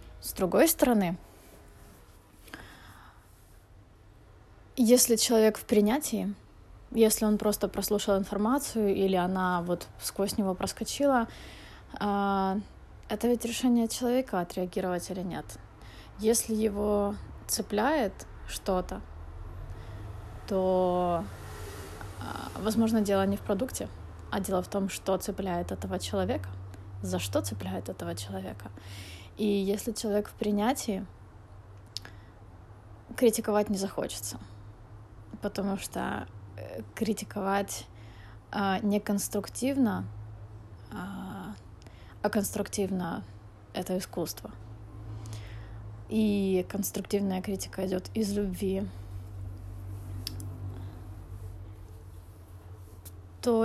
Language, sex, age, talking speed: Russian, female, 20-39, 80 wpm